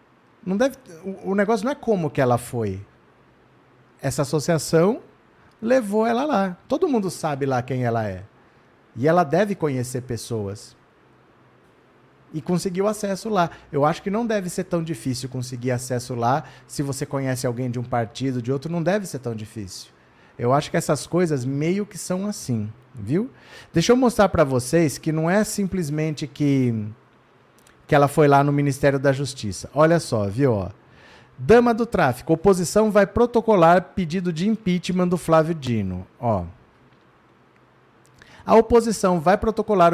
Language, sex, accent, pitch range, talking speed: Portuguese, male, Brazilian, 135-180 Hz, 155 wpm